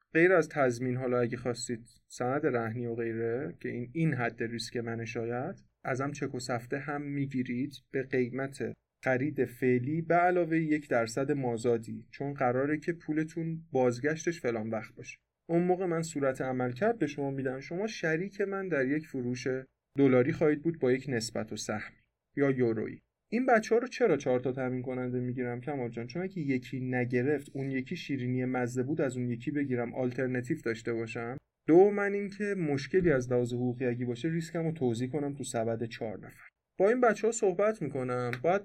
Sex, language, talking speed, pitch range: male, Persian, 175 wpm, 125-160 Hz